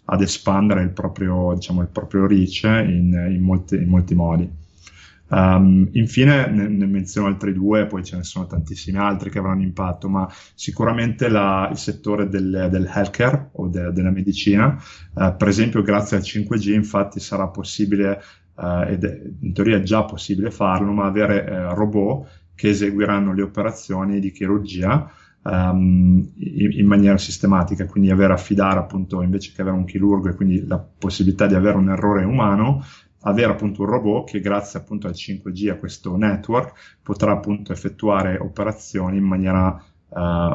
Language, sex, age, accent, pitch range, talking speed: Italian, male, 30-49, native, 95-105 Hz, 160 wpm